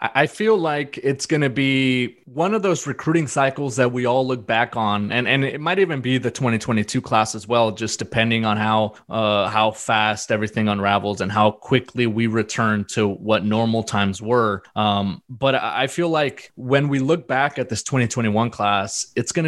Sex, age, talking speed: male, 20-39, 195 wpm